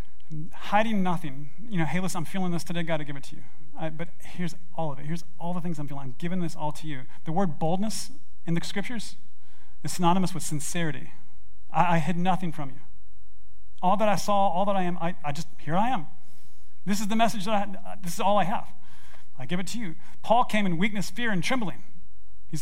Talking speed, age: 230 wpm, 40-59